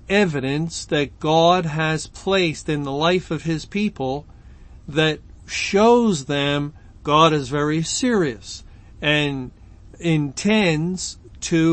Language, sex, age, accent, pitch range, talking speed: English, male, 50-69, American, 130-160 Hz, 105 wpm